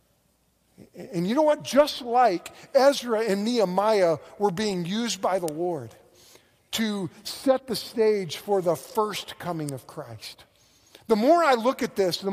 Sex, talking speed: male, 155 wpm